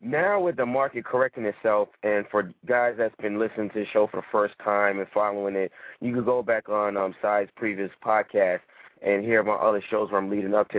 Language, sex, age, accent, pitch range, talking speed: English, male, 30-49, American, 105-130 Hz, 230 wpm